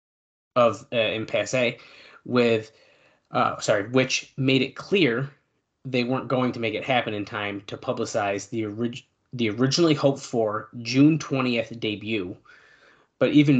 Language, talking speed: English, 130 wpm